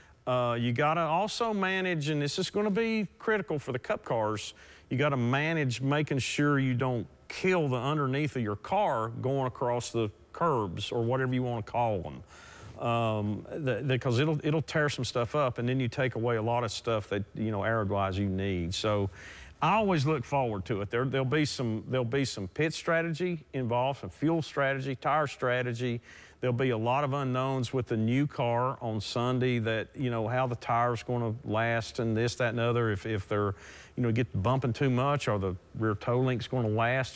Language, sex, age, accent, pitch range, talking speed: English, male, 40-59, American, 110-140 Hz, 210 wpm